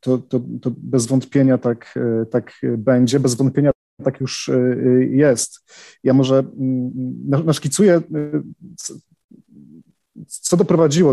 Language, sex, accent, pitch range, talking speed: Polish, male, native, 120-135 Hz, 90 wpm